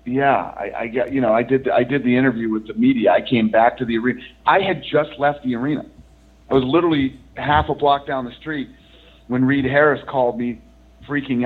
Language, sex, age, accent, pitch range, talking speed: English, male, 40-59, American, 95-135 Hz, 225 wpm